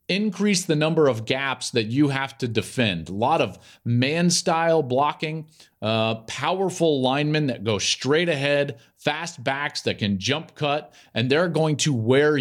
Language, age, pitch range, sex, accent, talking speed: English, 40-59, 115-160 Hz, male, American, 160 wpm